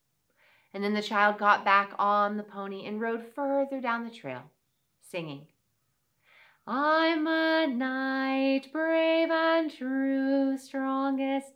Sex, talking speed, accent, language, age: female, 120 wpm, American, English, 40-59